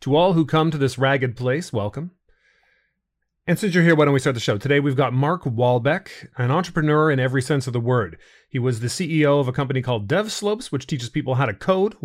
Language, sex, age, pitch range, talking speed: English, male, 30-49, 125-170 Hz, 235 wpm